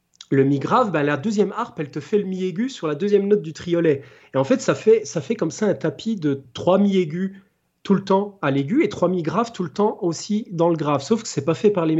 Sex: male